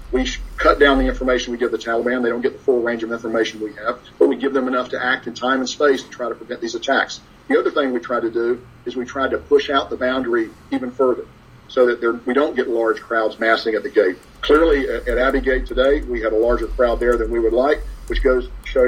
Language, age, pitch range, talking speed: English, 50-69, 120-140 Hz, 265 wpm